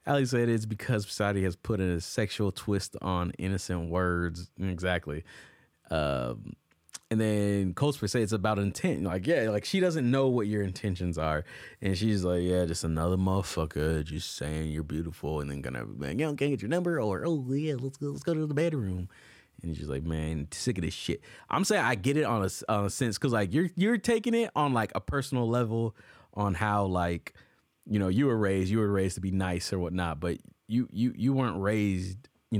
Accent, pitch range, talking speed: American, 90-120 Hz, 215 wpm